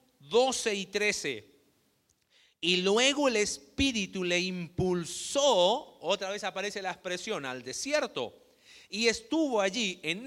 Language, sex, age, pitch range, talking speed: Spanish, male, 40-59, 185-260 Hz, 115 wpm